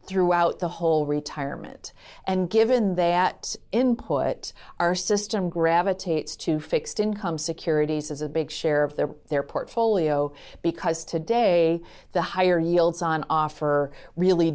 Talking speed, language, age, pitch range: 130 wpm, English, 40-59, 150-180 Hz